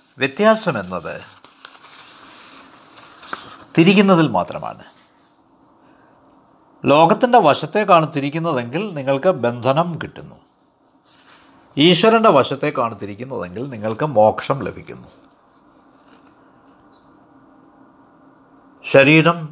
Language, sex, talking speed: Malayalam, male, 50 wpm